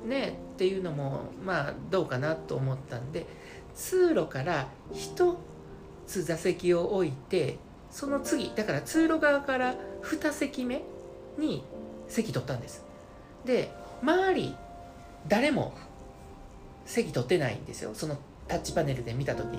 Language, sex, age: Japanese, male, 50-69